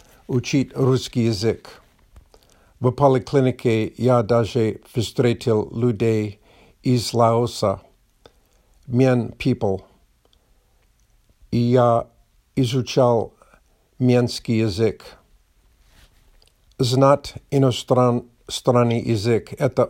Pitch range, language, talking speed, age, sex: 110-130 Hz, Russian, 70 wpm, 50-69, male